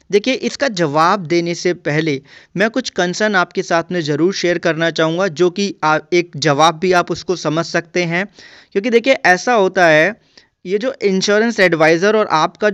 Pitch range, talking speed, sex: 165-205 Hz, 175 wpm, male